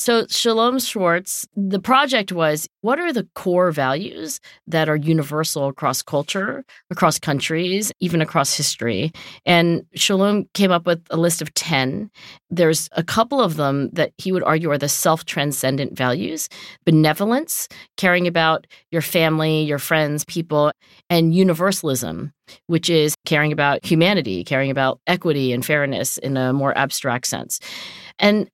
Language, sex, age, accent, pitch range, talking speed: English, female, 40-59, American, 150-190 Hz, 145 wpm